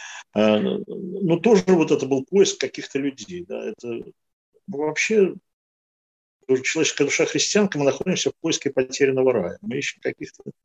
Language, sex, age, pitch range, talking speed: Russian, male, 50-69, 120-180 Hz, 130 wpm